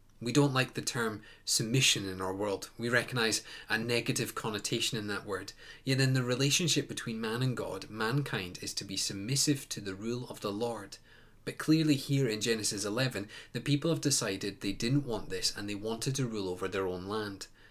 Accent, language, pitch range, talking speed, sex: British, English, 110-140 Hz, 200 wpm, male